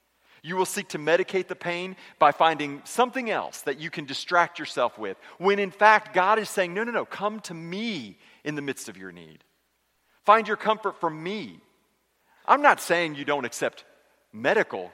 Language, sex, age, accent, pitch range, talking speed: English, male, 40-59, American, 160-215 Hz, 190 wpm